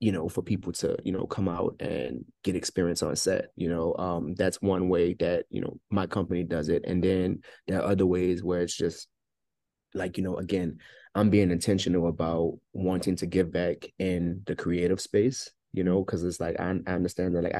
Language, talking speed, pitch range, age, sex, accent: English, 210 wpm, 85-95 Hz, 20-39, male, American